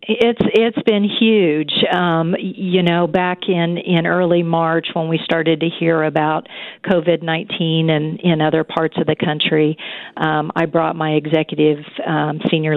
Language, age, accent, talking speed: English, 50-69, American, 155 wpm